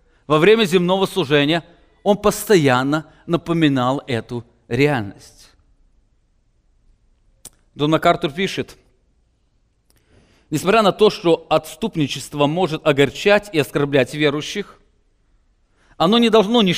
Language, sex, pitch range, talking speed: English, male, 130-175 Hz, 95 wpm